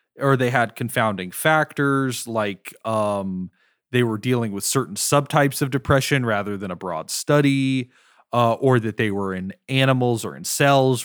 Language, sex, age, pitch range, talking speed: English, male, 30-49, 115-150 Hz, 165 wpm